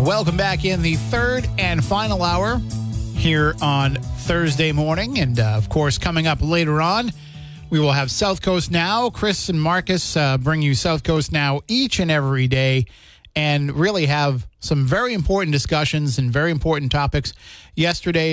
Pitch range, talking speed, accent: 135-165 Hz, 165 wpm, American